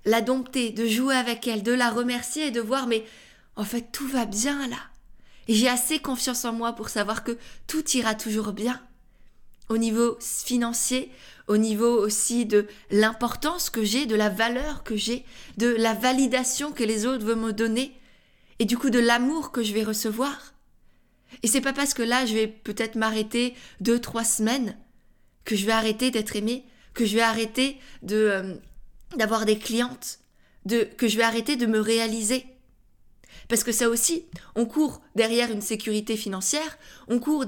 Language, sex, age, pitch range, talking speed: French, female, 20-39, 220-255 Hz, 180 wpm